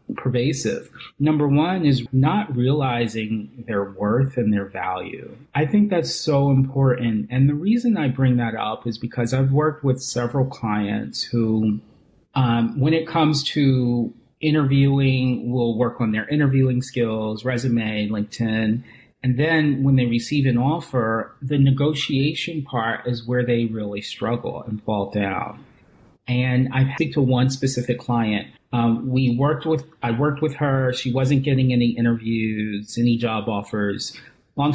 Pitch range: 115-140 Hz